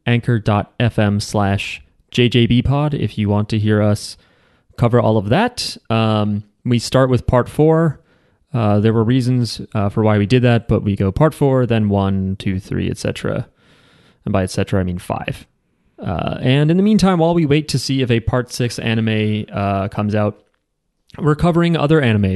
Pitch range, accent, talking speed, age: 105-135 Hz, American, 180 wpm, 30-49